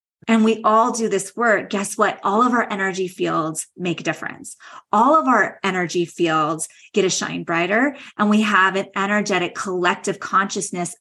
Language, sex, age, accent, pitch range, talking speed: English, female, 20-39, American, 185-225 Hz, 175 wpm